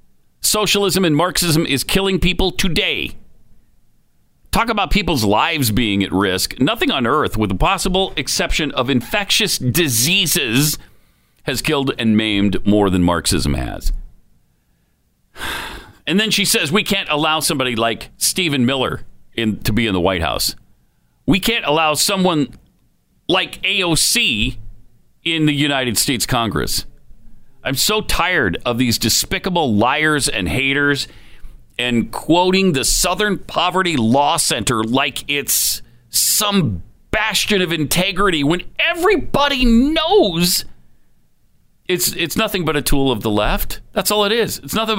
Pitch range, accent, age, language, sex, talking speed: 120-200 Hz, American, 40-59, English, male, 135 wpm